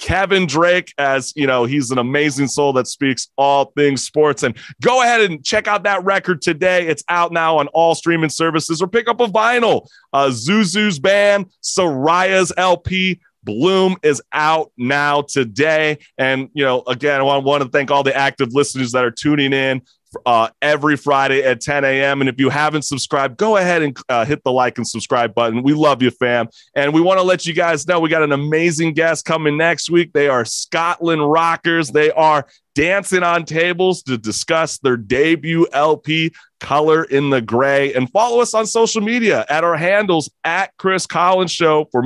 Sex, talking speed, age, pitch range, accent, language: male, 195 wpm, 30-49, 140-180 Hz, American, English